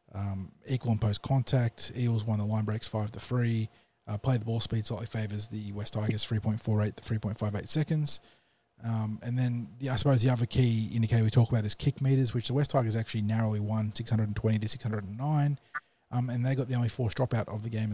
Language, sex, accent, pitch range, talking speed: English, male, Australian, 105-120 Hz, 205 wpm